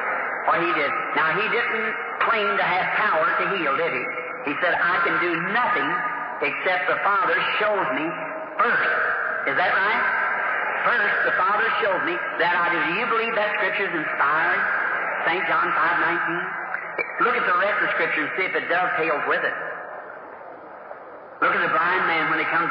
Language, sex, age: English, male, 50-69